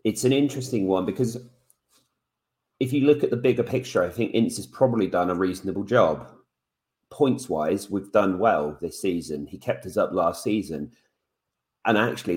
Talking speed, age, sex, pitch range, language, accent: 170 wpm, 30-49, male, 90-115 Hz, English, British